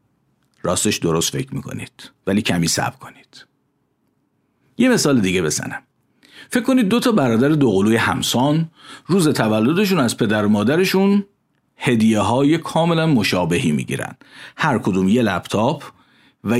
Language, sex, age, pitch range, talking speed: Persian, male, 50-69, 110-155 Hz, 125 wpm